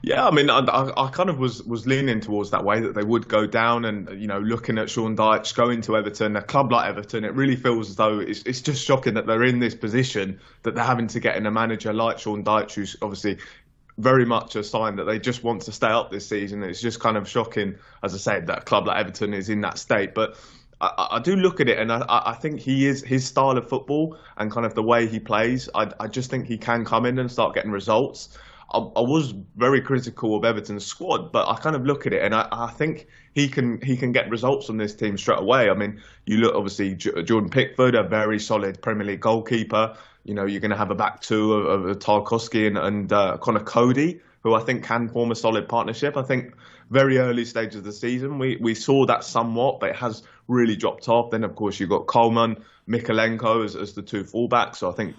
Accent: British